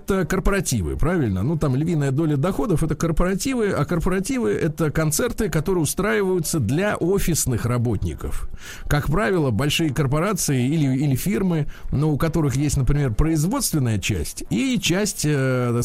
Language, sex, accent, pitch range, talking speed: Russian, male, native, 115-170 Hz, 150 wpm